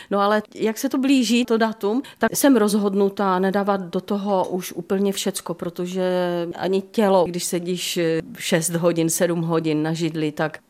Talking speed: 165 wpm